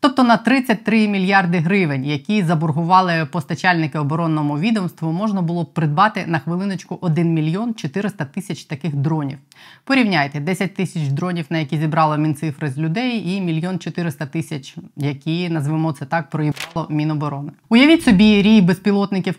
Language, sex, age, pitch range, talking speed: Ukrainian, female, 20-39, 155-185 Hz, 140 wpm